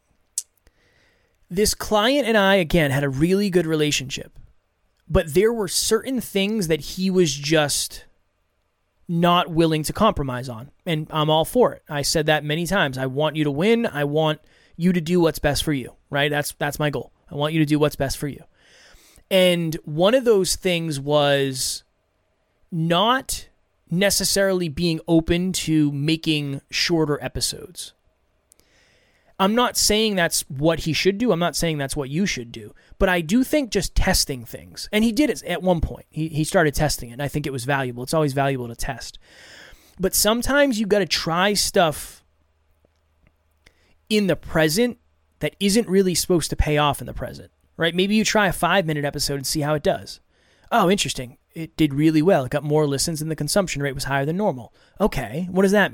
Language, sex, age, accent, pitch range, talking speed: English, male, 20-39, American, 140-185 Hz, 190 wpm